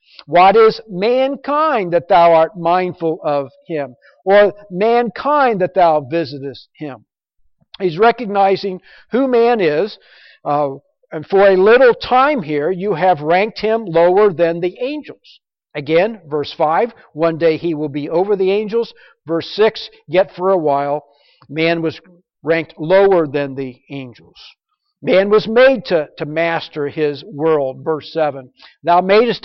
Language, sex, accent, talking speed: English, male, American, 145 wpm